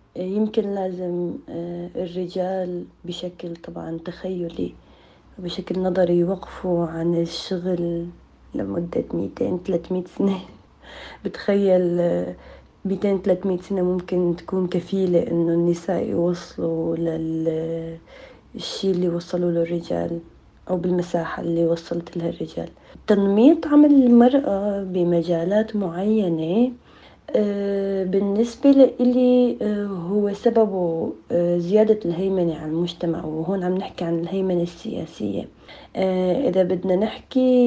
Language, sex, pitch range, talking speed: Arabic, female, 170-205 Hz, 95 wpm